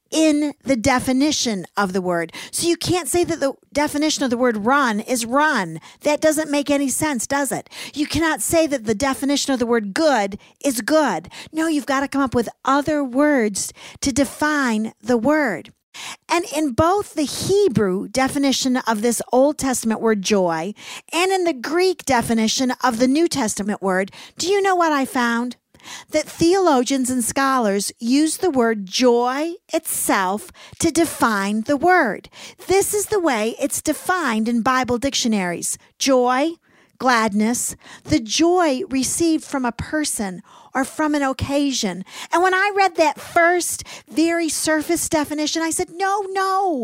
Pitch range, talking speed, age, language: 240-325 Hz, 160 wpm, 50-69, English